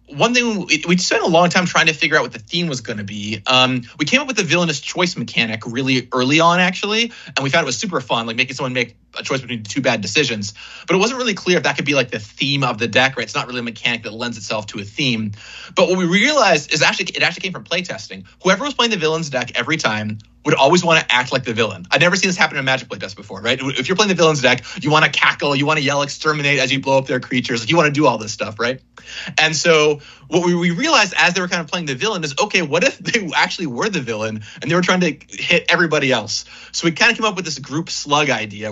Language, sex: English, male